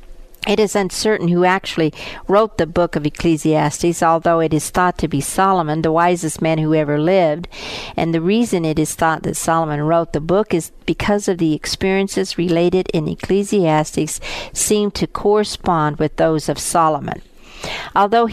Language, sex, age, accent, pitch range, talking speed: English, female, 50-69, American, 160-205 Hz, 165 wpm